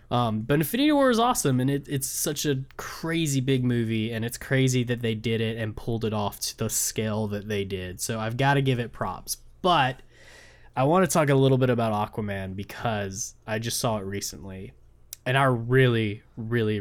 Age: 10-29